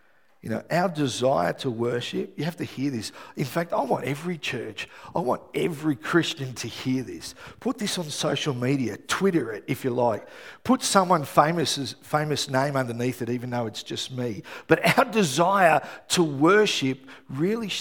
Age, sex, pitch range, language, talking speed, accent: 50-69, male, 120-165 Hz, English, 175 wpm, Australian